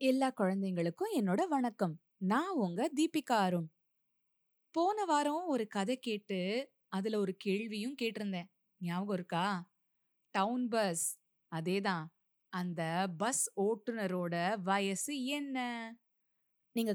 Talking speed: 100 wpm